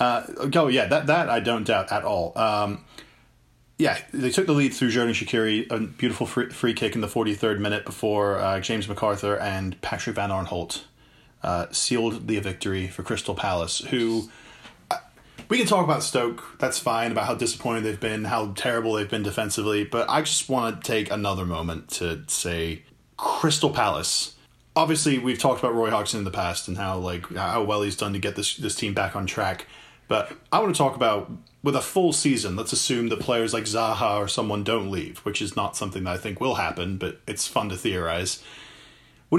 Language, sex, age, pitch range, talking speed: English, male, 20-39, 95-120 Hz, 205 wpm